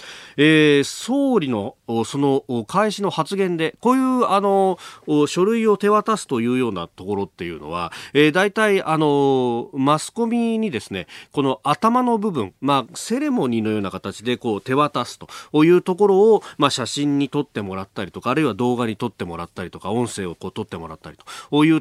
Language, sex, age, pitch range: Japanese, male, 40-59, 120-195 Hz